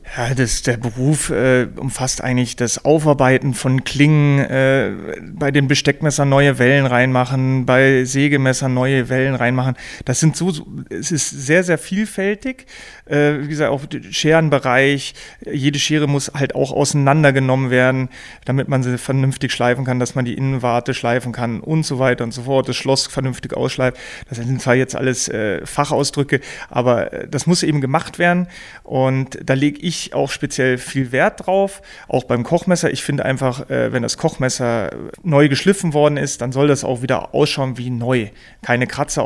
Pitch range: 130-145 Hz